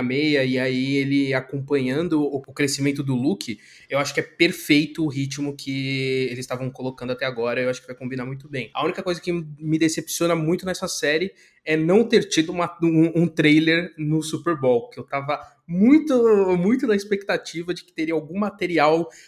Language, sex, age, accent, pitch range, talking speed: Portuguese, male, 20-39, Brazilian, 130-170 Hz, 185 wpm